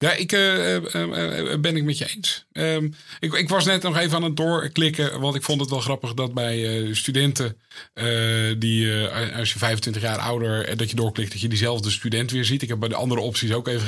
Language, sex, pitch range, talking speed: Dutch, male, 110-145 Hz, 240 wpm